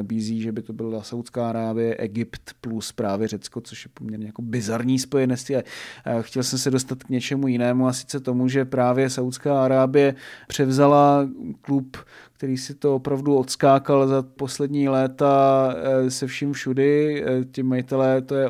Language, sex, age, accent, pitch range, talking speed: Czech, male, 30-49, native, 125-140 Hz, 155 wpm